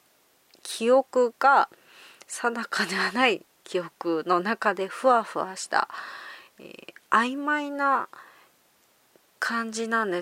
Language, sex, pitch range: Japanese, female, 175-245 Hz